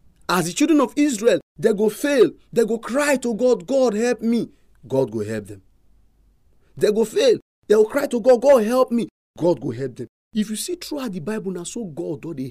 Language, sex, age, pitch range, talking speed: English, male, 40-59, 175-275 Hz, 215 wpm